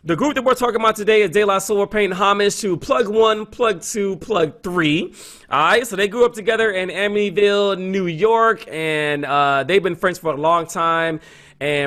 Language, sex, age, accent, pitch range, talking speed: English, male, 30-49, American, 160-200 Hz, 195 wpm